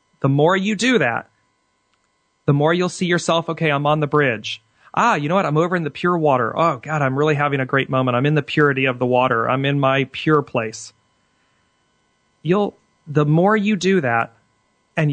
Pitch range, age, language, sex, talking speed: 120-155 Hz, 40-59, English, male, 205 wpm